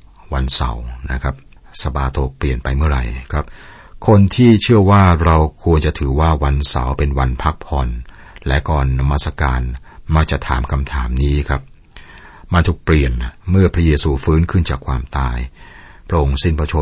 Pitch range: 70-85 Hz